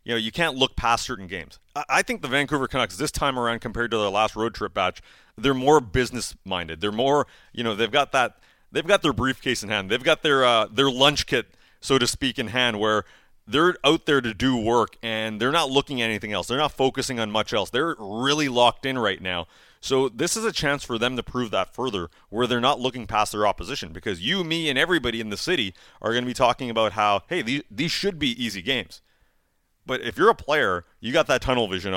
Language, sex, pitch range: English, male, 110-145 Hz